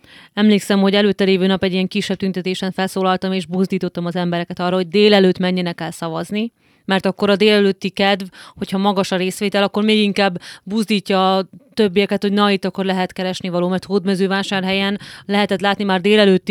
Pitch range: 180-205 Hz